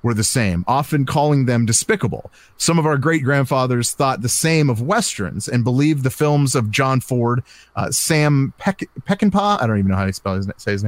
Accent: American